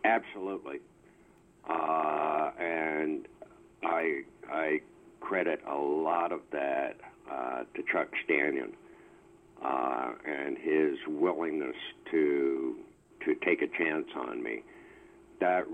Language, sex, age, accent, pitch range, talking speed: English, male, 60-79, American, 340-365 Hz, 100 wpm